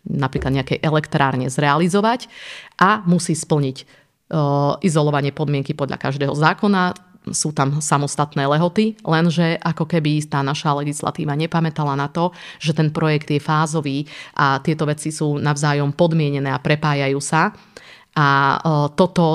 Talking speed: 125 wpm